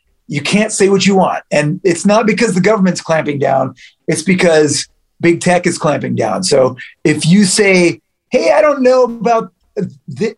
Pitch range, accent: 145-190 Hz, American